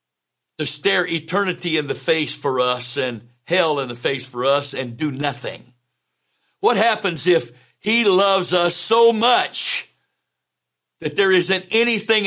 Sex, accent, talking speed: male, American, 145 wpm